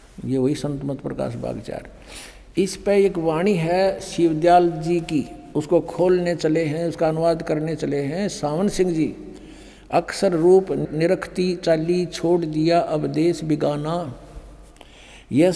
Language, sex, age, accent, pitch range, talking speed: Hindi, male, 60-79, native, 155-185 Hz, 135 wpm